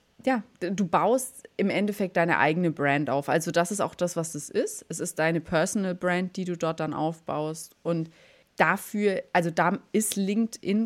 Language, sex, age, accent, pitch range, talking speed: German, female, 30-49, German, 165-205 Hz, 180 wpm